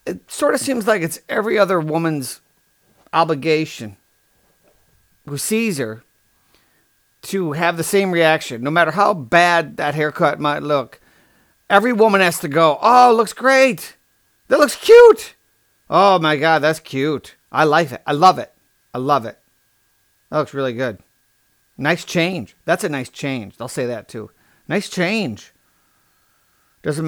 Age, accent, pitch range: 40-59, American, 145-215 Hz